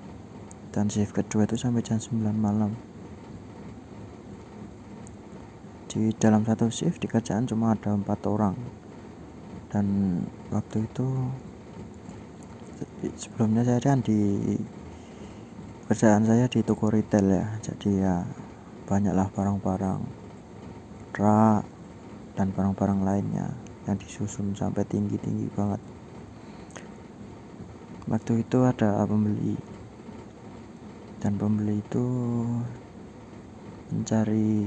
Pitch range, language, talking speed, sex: 100-115 Hz, Indonesian, 90 wpm, male